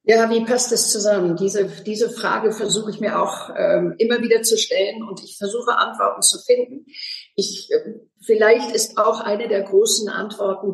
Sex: female